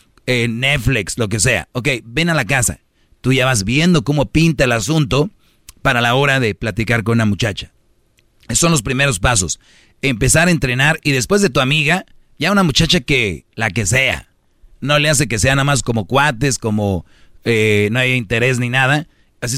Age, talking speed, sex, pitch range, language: 40-59, 190 wpm, male, 115-145 Hz, Spanish